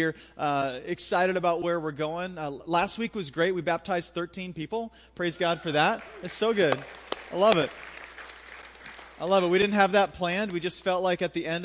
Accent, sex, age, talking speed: American, male, 30-49, 205 wpm